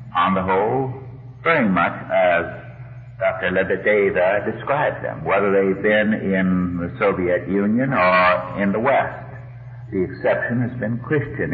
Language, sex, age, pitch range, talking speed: English, male, 60-79, 100-125 Hz, 135 wpm